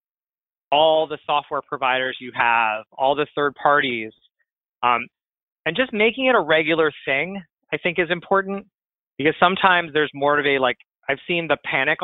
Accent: American